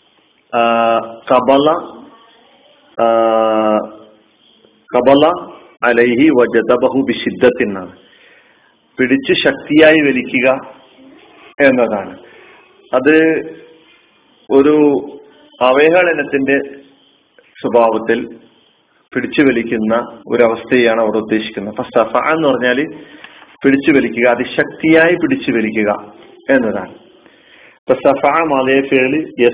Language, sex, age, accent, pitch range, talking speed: Malayalam, male, 40-59, native, 115-145 Hz, 55 wpm